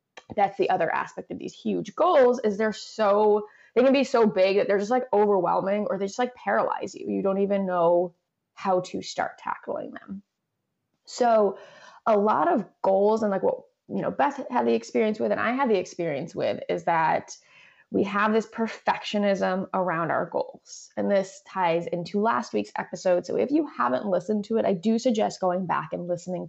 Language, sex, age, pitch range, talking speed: English, female, 20-39, 185-240 Hz, 195 wpm